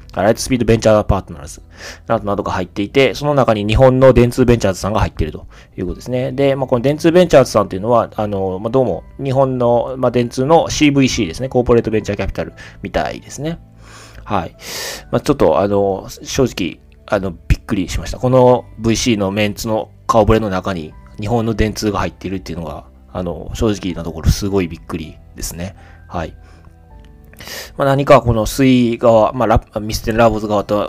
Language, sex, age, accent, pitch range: Japanese, male, 20-39, native, 90-115 Hz